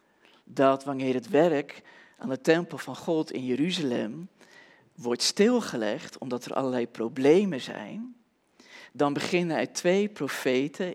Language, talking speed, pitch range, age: Dutch, 125 wpm, 140-205 Hz, 40-59